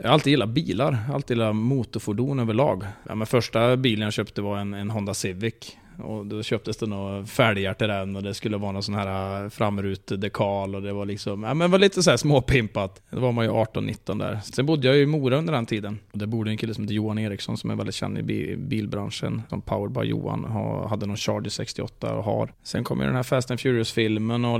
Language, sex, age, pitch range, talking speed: English, male, 20-39, 105-125 Hz, 245 wpm